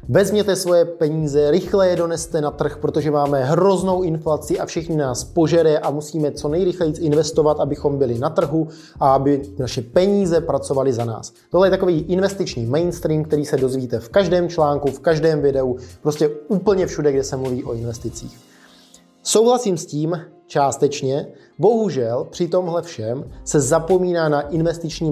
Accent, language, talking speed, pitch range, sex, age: native, Czech, 160 wpm, 135-175 Hz, male, 20-39